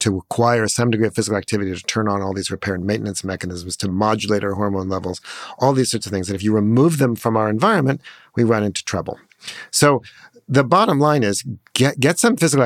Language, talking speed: English, 225 wpm